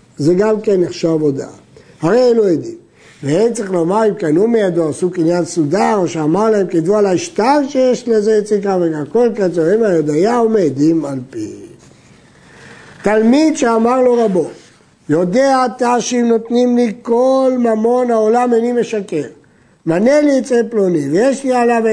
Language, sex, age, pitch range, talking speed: Hebrew, male, 60-79, 185-255 Hz, 155 wpm